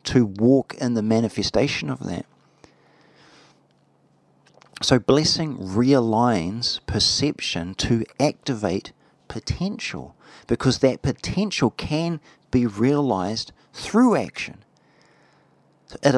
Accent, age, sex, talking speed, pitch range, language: Australian, 40-59, male, 85 wpm, 105-140 Hz, English